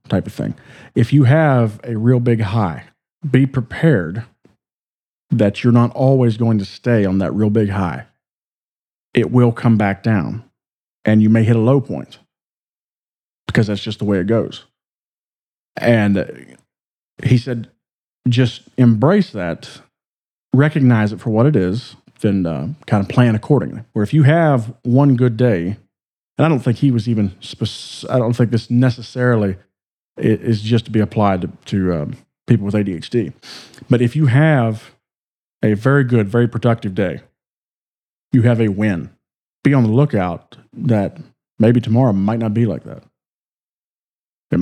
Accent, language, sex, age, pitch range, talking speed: American, English, male, 40-59, 105-125 Hz, 160 wpm